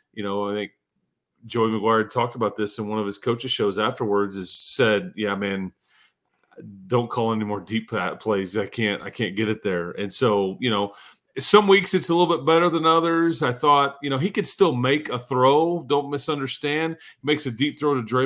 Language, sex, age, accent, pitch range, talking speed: English, male, 30-49, American, 120-155 Hz, 215 wpm